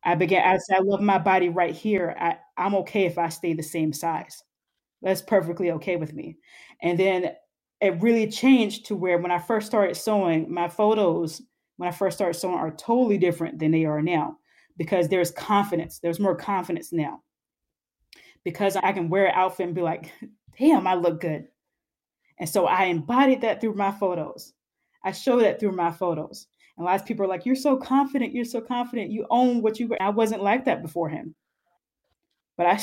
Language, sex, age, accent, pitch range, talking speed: English, female, 20-39, American, 175-220 Hz, 200 wpm